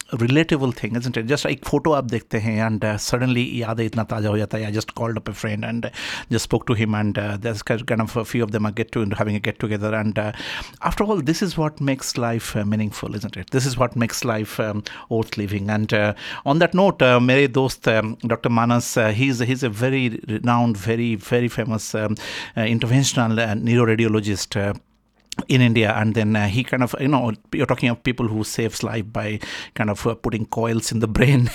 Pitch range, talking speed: 110-135 Hz, 205 wpm